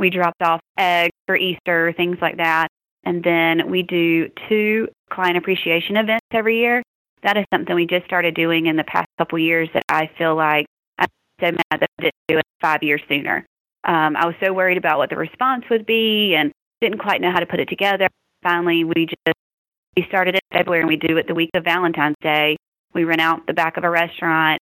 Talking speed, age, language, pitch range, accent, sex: 220 wpm, 30-49, English, 160-180 Hz, American, female